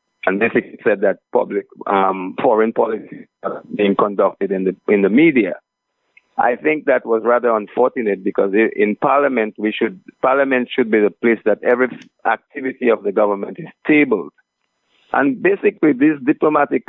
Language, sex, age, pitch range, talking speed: English, male, 50-69, 110-140 Hz, 155 wpm